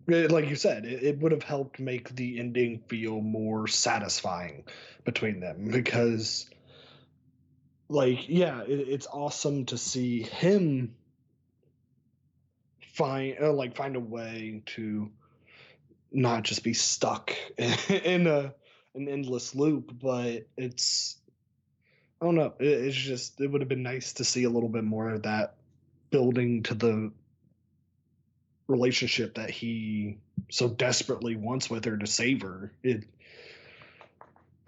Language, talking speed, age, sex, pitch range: English, 130 wpm, 20-39, male, 115-130 Hz